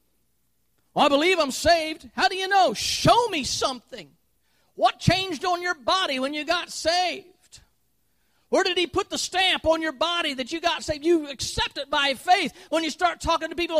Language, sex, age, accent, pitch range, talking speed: English, male, 40-59, American, 295-395 Hz, 190 wpm